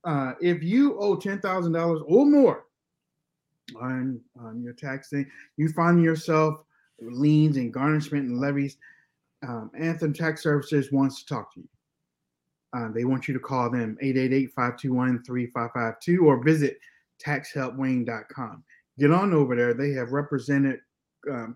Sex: male